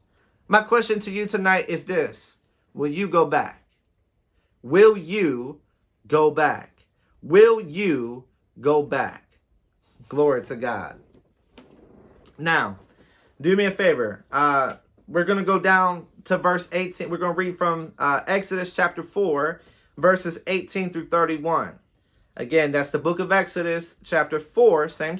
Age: 30-49